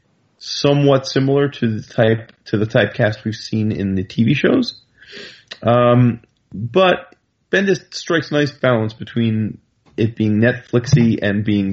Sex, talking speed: male, 135 wpm